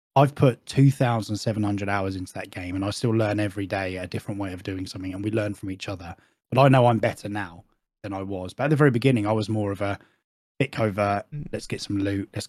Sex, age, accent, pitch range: male, 10-29, British, 95-115 Hz